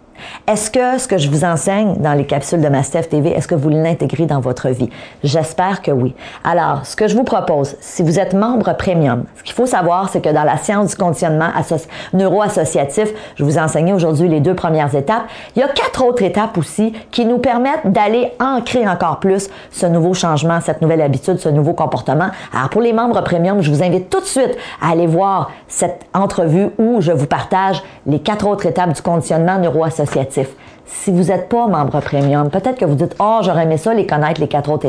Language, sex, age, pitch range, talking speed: French, female, 40-59, 155-215 Hz, 215 wpm